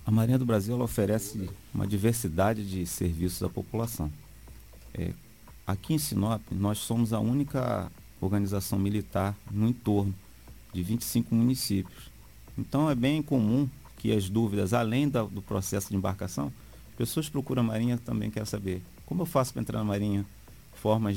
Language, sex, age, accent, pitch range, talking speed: Portuguese, male, 40-59, Brazilian, 95-120 Hz, 155 wpm